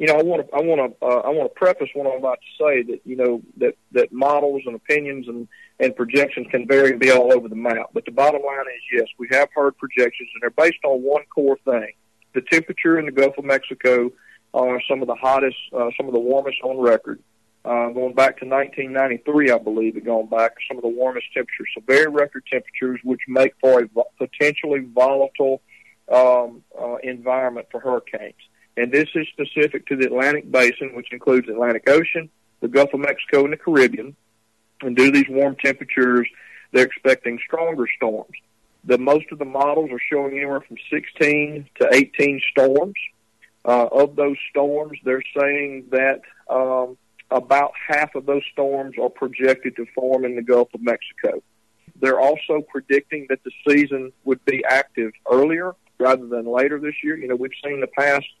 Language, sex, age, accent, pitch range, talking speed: English, male, 40-59, American, 125-145 Hz, 195 wpm